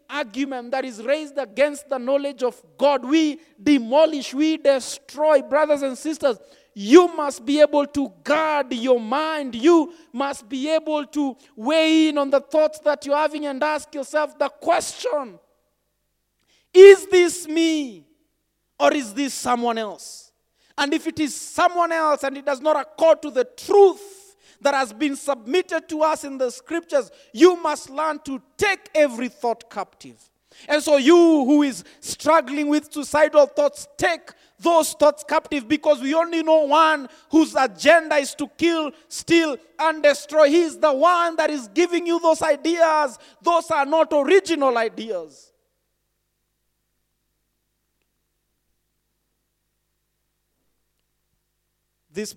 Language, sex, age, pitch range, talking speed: English, male, 40-59, 280-320 Hz, 140 wpm